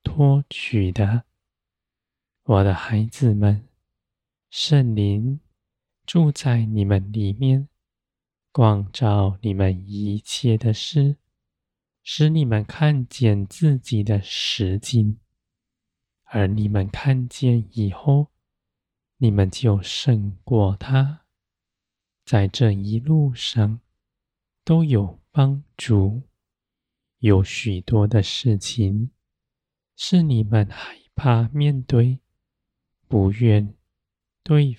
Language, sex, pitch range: Chinese, male, 100-130 Hz